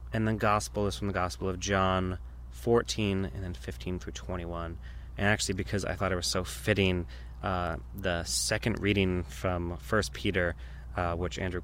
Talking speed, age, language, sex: 175 wpm, 20-39, English, male